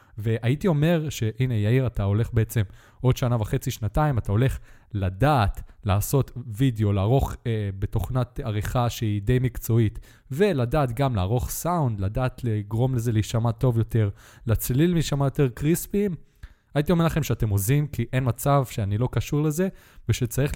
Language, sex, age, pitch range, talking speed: Hebrew, male, 20-39, 110-145 Hz, 145 wpm